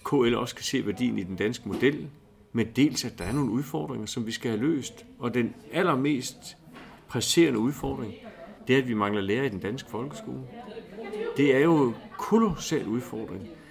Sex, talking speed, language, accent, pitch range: male, 185 wpm, Danish, native, 105-135 Hz